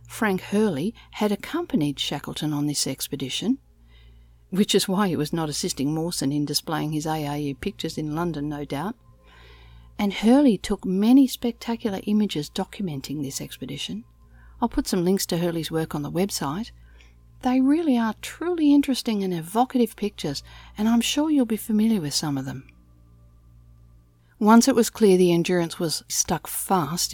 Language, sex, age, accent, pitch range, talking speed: English, female, 50-69, Australian, 145-215 Hz, 155 wpm